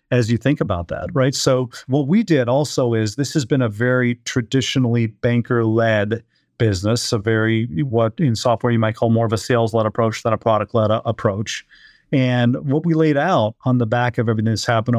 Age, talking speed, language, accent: 40-59, 195 wpm, English, American